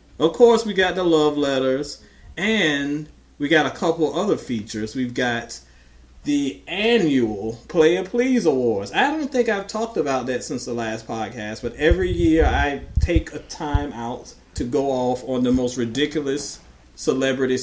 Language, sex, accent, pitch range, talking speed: English, male, American, 115-155 Hz, 165 wpm